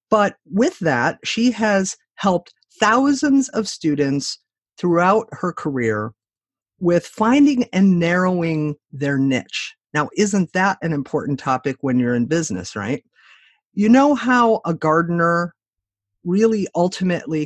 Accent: American